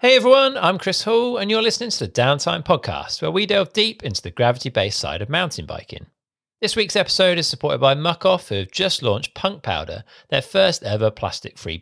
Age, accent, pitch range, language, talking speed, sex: 40-59, British, 115-160 Hz, English, 205 wpm, male